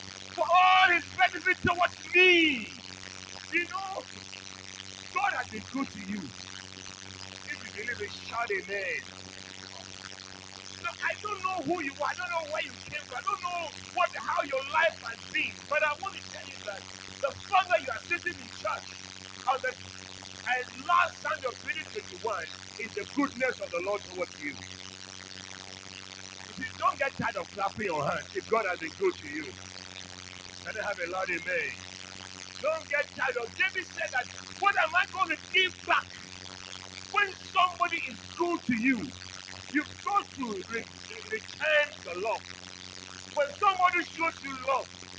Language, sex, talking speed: English, male, 165 wpm